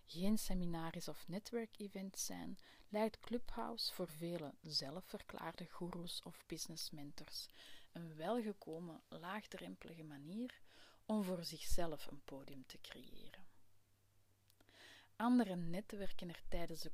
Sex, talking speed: female, 105 wpm